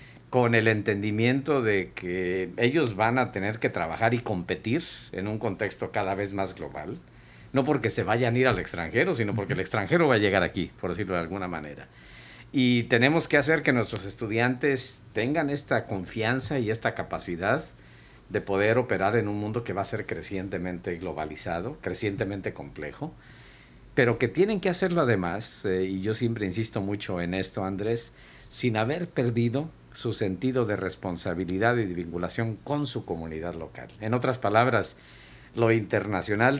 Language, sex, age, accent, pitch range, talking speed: Spanish, male, 50-69, Mexican, 95-125 Hz, 165 wpm